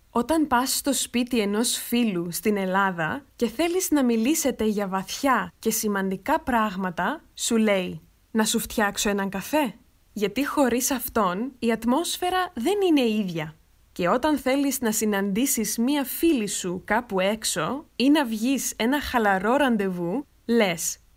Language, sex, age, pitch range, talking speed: Greek, female, 20-39, 205-285 Hz, 140 wpm